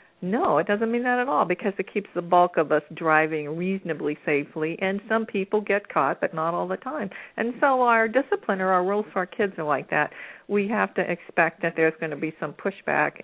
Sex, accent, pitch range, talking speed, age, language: female, American, 155-195 Hz, 230 wpm, 50-69, English